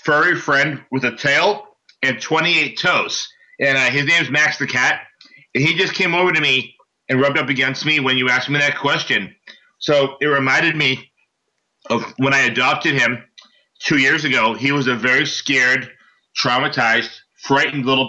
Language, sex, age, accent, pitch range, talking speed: English, male, 40-59, American, 135-155 Hz, 180 wpm